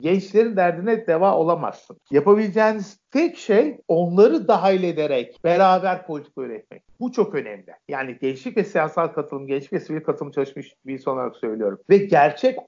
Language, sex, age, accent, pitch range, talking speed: Turkish, male, 50-69, native, 155-215 Hz, 145 wpm